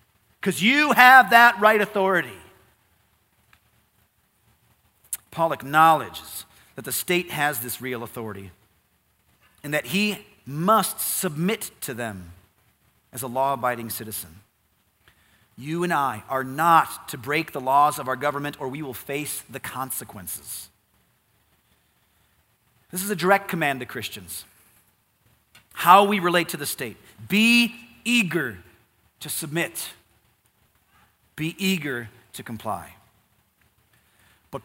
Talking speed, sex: 115 wpm, male